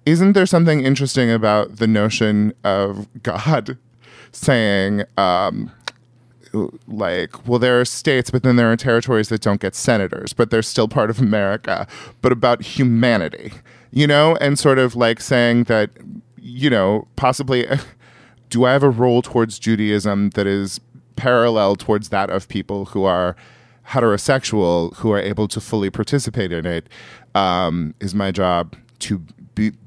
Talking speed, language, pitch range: 155 wpm, English, 100-130 Hz